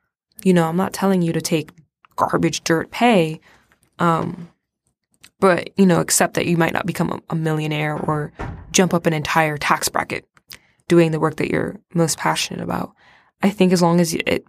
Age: 20-39